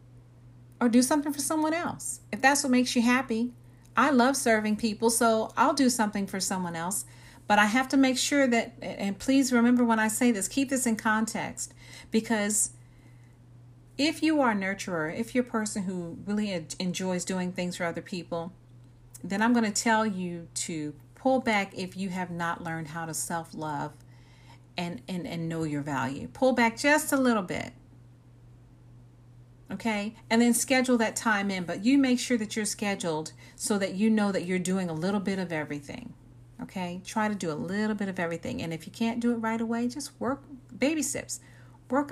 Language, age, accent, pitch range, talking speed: English, 40-59, American, 155-240 Hz, 190 wpm